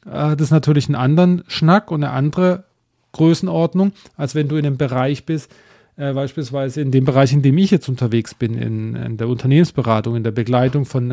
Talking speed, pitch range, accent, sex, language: 195 wpm, 125-160 Hz, German, male, German